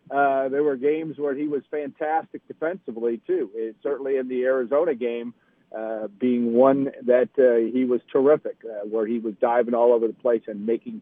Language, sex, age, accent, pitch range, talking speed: English, male, 50-69, American, 130-160 Hz, 190 wpm